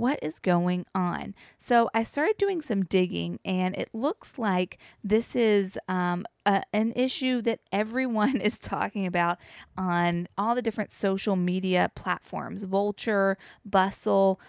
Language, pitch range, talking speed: English, 185-235 Hz, 135 wpm